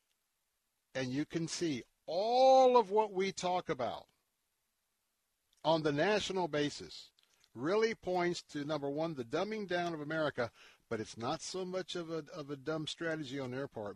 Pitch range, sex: 110-150 Hz, male